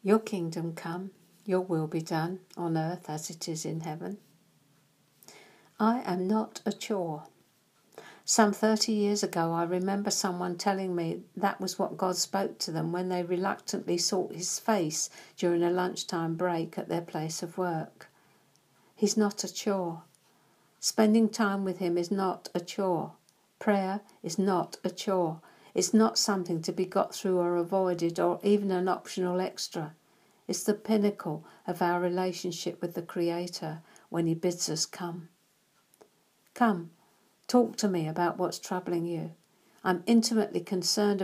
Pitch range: 170-200 Hz